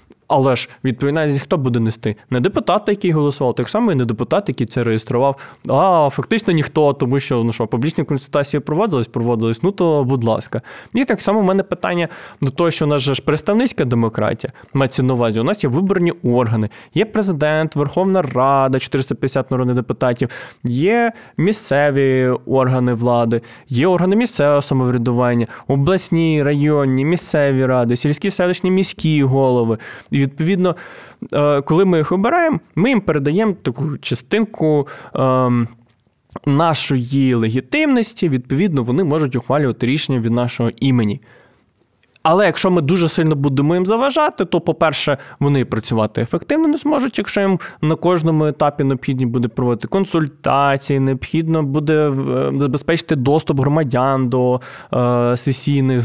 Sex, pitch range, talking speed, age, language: male, 125-170 Hz, 140 wpm, 20-39, Ukrainian